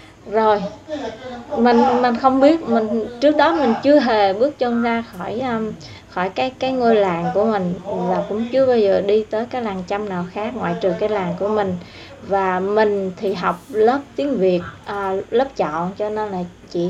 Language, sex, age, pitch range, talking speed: Vietnamese, female, 20-39, 190-235 Hz, 190 wpm